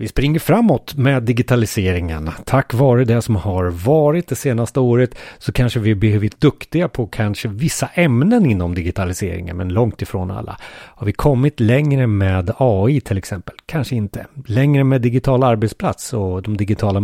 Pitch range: 100-145 Hz